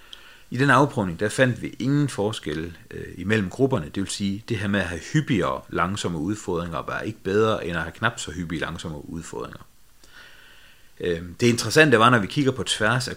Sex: male